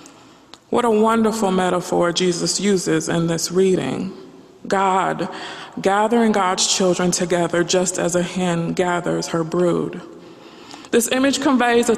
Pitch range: 185-235 Hz